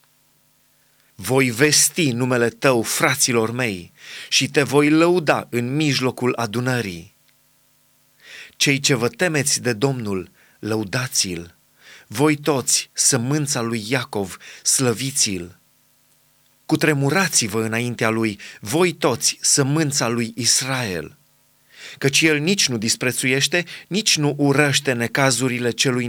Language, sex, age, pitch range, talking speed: Romanian, male, 30-49, 120-150 Hz, 100 wpm